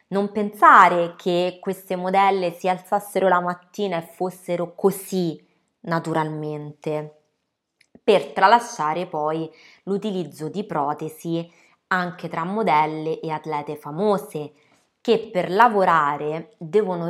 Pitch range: 150-190 Hz